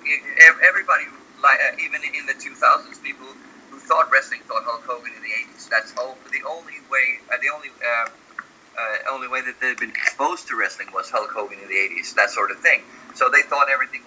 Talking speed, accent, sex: 215 wpm, American, male